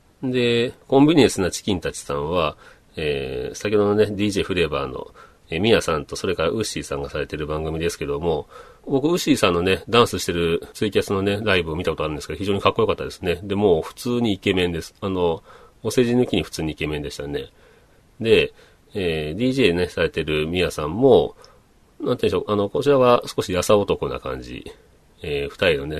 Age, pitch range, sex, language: 40-59, 85-130 Hz, male, Japanese